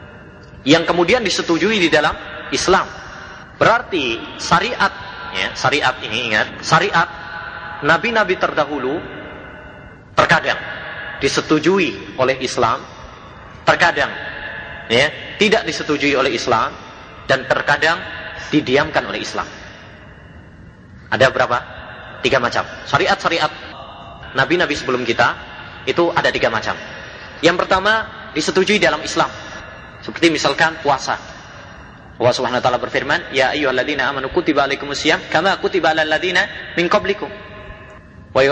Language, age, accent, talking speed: Indonesian, 30-49, native, 105 wpm